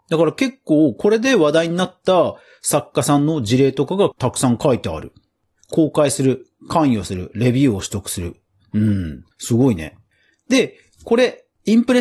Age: 40-59